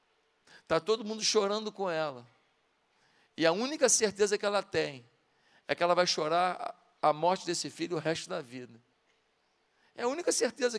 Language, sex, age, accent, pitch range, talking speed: Portuguese, male, 50-69, Brazilian, 175-225 Hz, 165 wpm